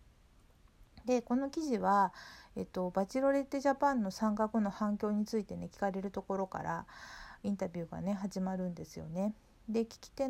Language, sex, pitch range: Japanese, female, 190-245 Hz